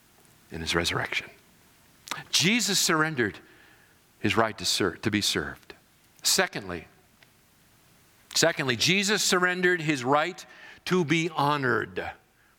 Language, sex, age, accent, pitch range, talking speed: English, male, 50-69, American, 125-185 Hz, 95 wpm